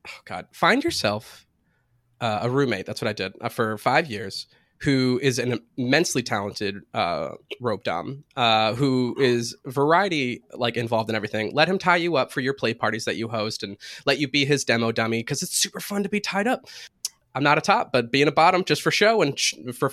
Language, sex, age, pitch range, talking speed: English, male, 20-39, 120-165 Hz, 215 wpm